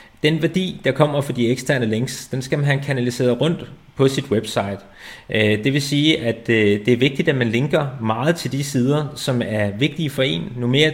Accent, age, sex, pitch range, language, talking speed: native, 30-49, male, 115-150 Hz, Danish, 210 wpm